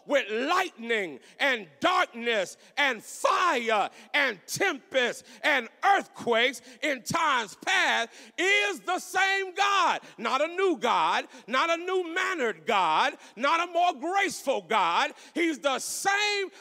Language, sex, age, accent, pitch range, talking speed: English, male, 40-59, American, 250-345 Hz, 125 wpm